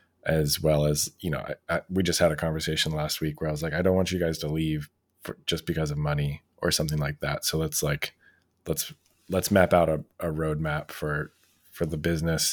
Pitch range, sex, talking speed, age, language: 80-90 Hz, male, 215 wpm, 20-39, English